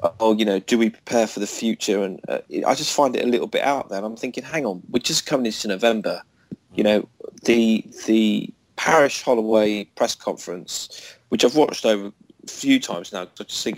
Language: English